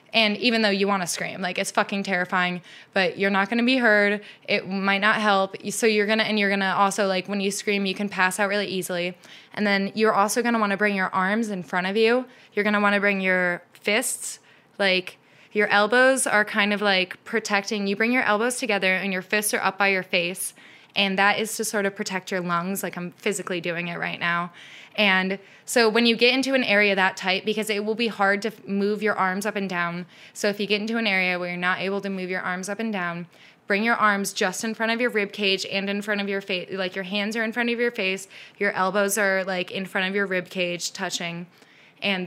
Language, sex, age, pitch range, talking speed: English, female, 20-39, 190-215 Hz, 255 wpm